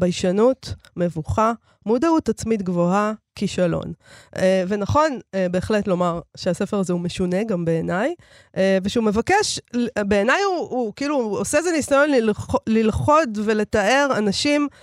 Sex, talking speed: female, 115 wpm